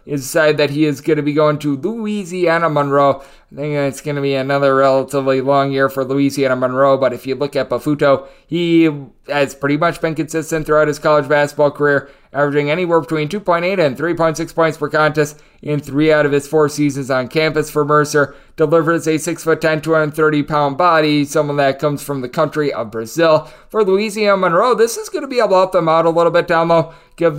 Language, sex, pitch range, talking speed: English, male, 140-165 Hz, 215 wpm